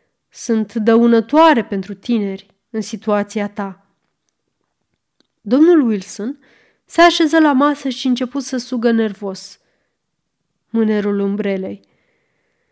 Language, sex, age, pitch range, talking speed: Romanian, female, 30-49, 210-275 Hz, 100 wpm